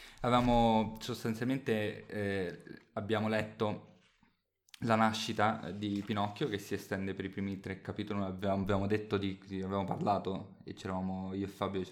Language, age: Italian, 20-39